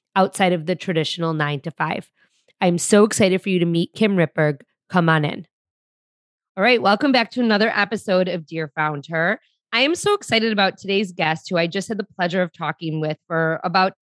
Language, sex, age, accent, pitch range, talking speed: English, female, 20-39, American, 170-210 Hz, 205 wpm